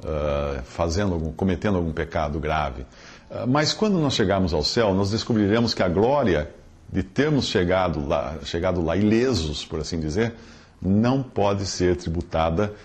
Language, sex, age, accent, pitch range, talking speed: English, male, 50-69, Brazilian, 85-130 Hz, 140 wpm